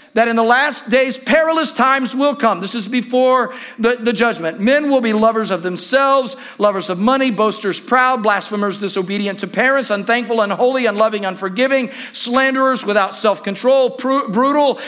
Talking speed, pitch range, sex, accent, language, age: 155 wpm, 200-265 Hz, male, American, English, 50-69